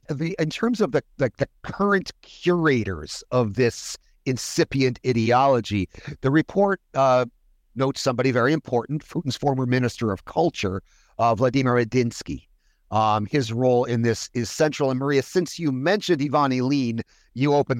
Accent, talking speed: American, 150 wpm